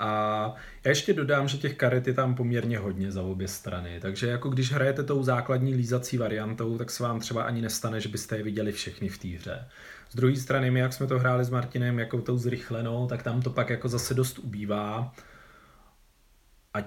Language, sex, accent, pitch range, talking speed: Czech, male, native, 115-130 Hz, 205 wpm